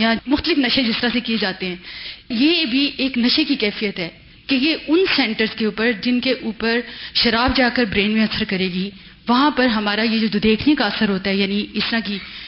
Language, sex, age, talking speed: Urdu, female, 30-49, 220 wpm